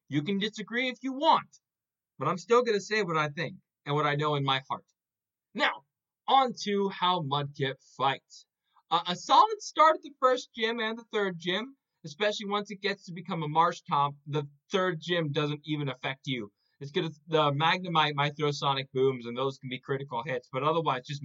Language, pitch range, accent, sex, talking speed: English, 140-195 Hz, American, male, 205 wpm